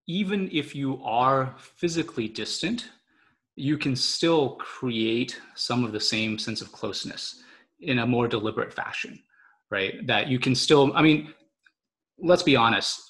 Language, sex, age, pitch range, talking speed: English, male, 20-39, 110-150 Hz, 145 wpm